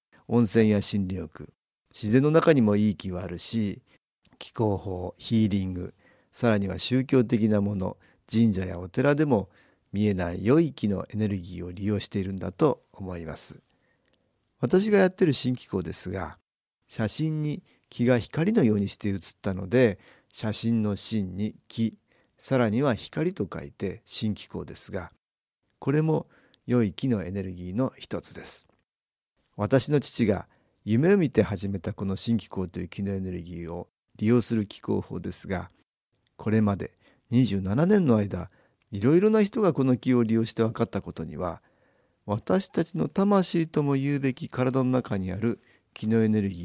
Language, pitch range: Japanese, 95-130 Hz